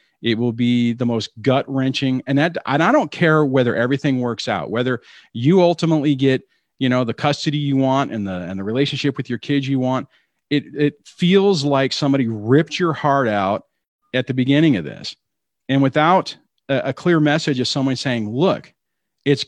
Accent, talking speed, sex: American, 190 wpm, male